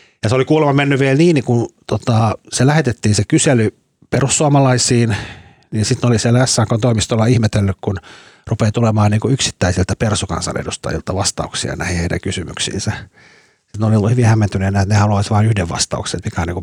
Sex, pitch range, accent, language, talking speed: male, 100-120 Hz, native, Finnish, 170 wpm